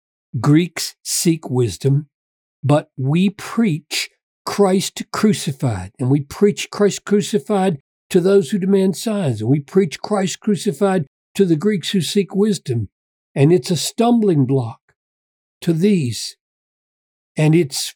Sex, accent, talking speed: male, American, 125 wpm